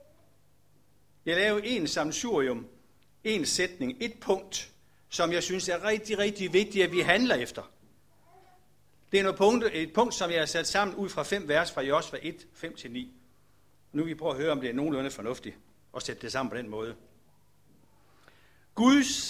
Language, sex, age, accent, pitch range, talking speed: Danish, male, 60-79, native, 160-215 Hz, 175 wpm